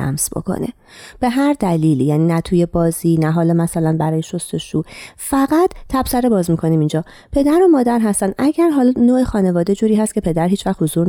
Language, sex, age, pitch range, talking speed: Persian, female, 30-49, 165-250 Hz, 190 wpm